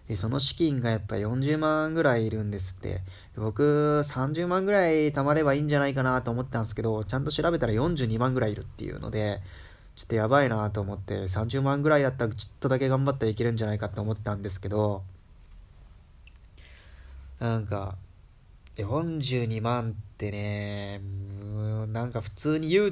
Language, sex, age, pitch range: Japanese, male, 20-39, 100-135 Hz